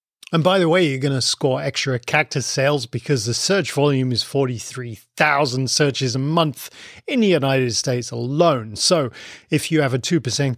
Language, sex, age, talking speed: English, male, 40-59, 175 wpm